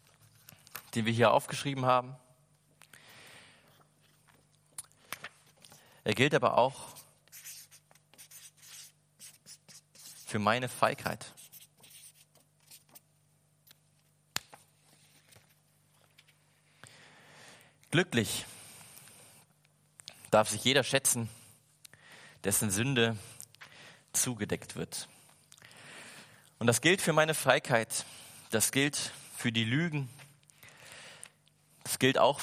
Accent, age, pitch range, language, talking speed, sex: German, 30-49, 115-145 Hz, German, 65 wpm, male